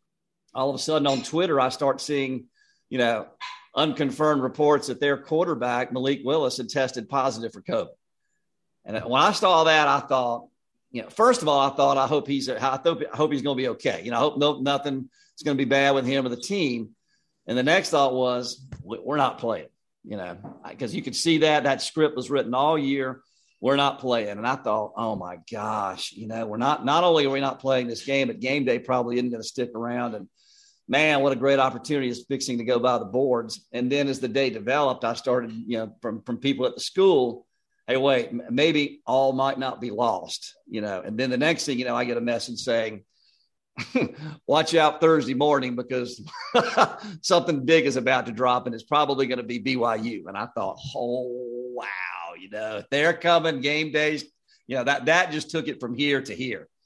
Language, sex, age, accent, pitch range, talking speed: English, male, 50-69, American, 125-150 Hz, 215 wpm